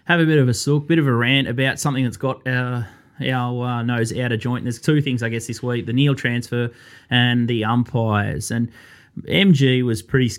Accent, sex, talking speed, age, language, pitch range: Australian, male, 225 wpm, 20-39, English, 115-135 Hz